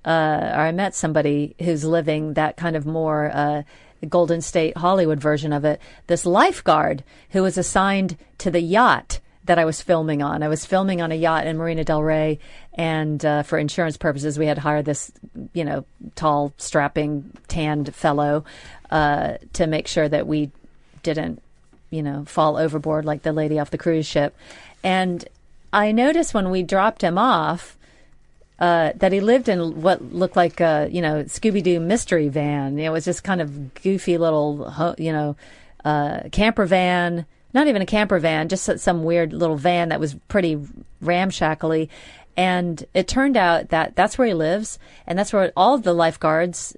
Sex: female